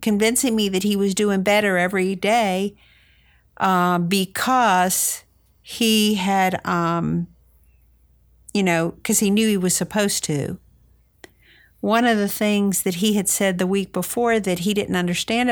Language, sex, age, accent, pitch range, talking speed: English, female, 50-69, American, 160-200 Hz, 145 wpm